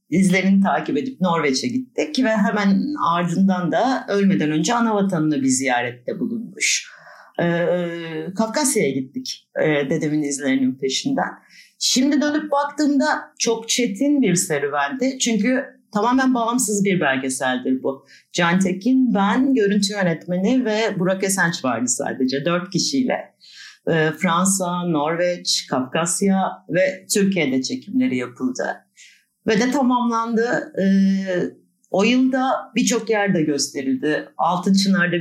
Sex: female